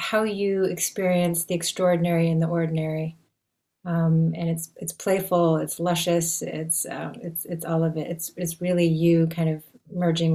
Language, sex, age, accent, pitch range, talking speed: English, female, 30-49, American, 165-185 Hz, 170 wpm